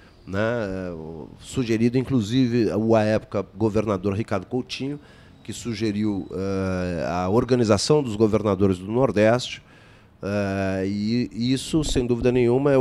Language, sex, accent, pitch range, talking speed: Portuguese, male, Brazilian, 100-125 Hz, 110 wpm